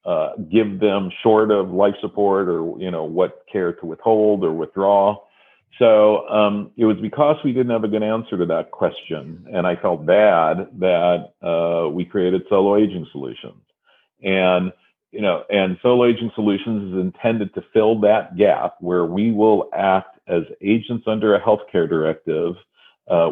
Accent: American